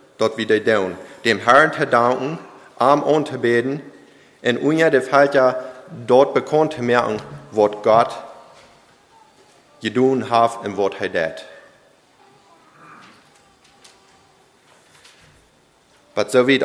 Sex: male